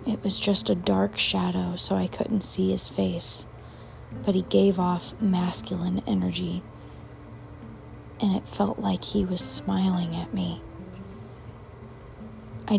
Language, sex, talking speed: English, female, 130 wpm